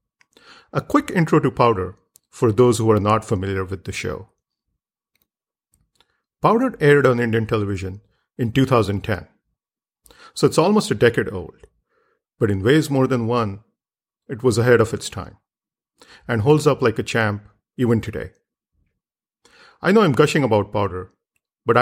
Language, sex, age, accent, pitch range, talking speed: English, male, 50-69, Indian, 100-135 Hz, 150 wpm